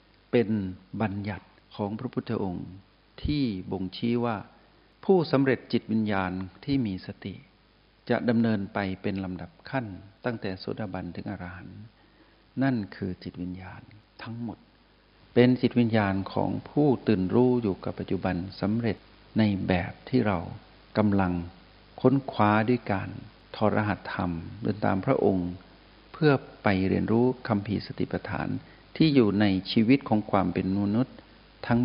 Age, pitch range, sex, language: 60-79, 95-120 Hz, male, Thai